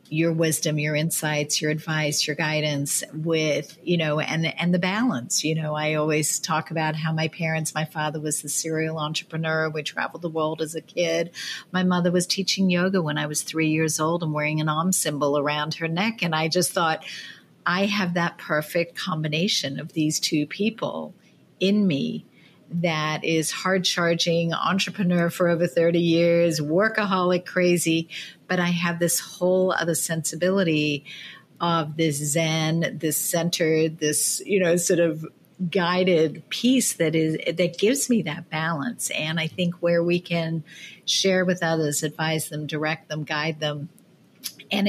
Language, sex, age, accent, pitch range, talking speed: English, female, 50-69, American, 155-175 Hz, 165 wpm